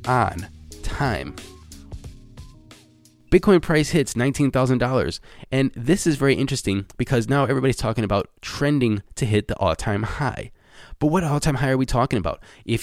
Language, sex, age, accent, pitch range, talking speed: English, male, 20-39, American, 105-135 Hz, 145 wpm